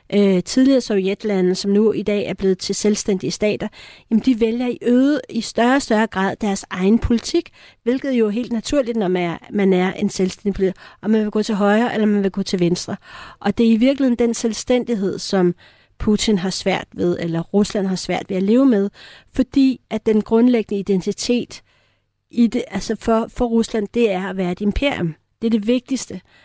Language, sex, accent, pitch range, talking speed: Danish, female, native, 195-235 Hz, 200 wpm